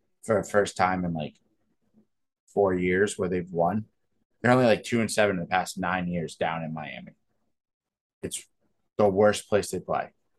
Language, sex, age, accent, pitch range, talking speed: English, male, 20-39, American, 90-115 Hz, 180 wpm